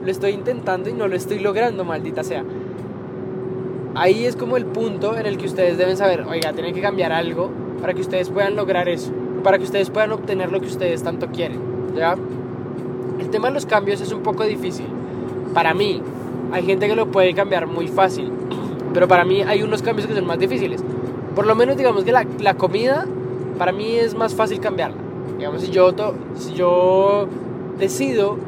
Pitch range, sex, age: 160-195 Hz, male, 20-39